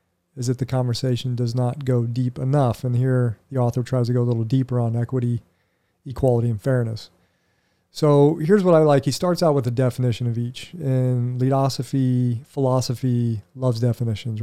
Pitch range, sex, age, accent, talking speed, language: 115-140 Hz, male, 40-59, American, 175 wpm, English